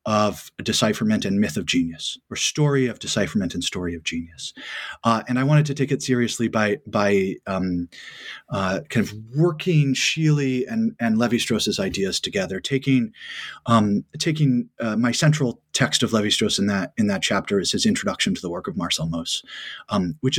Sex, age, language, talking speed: male, 30-49, English, 175 wpm